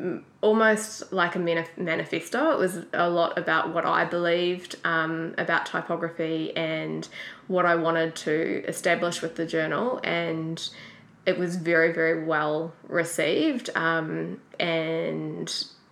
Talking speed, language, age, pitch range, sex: 125 wpm, English, 20-39, 165-200 Hz, female